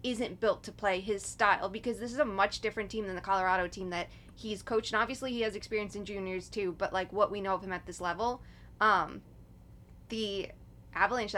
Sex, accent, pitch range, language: female, American, 195-230 Hz, English